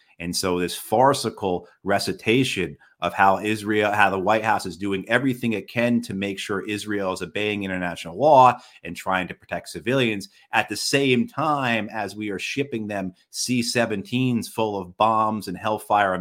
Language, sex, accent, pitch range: English, male, American, 100-125 Hz